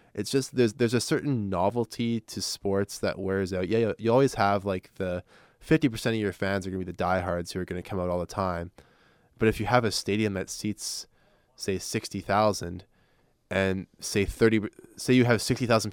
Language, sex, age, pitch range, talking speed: English, male, 20-39, 90-105 Hz, 205 wpm